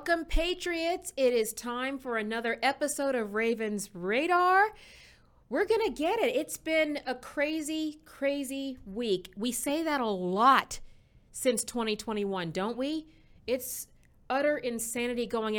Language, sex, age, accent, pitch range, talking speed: English, female, 40-59, American, 215-275 Hz, 135 wpm